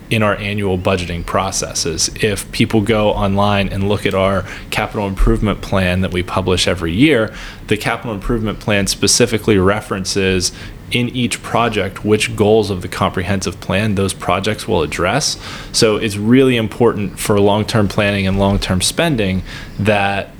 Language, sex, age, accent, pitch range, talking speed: English, male, 20-39, American, 100-120 Hz, 150 wpm